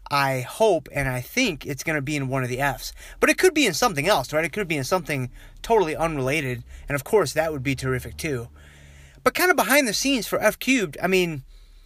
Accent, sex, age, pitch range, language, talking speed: American, male, 30-49, 130-190 Hz, English, 245 wpm